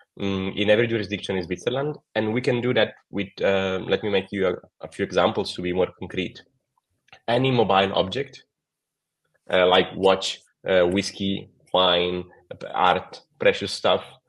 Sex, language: male, English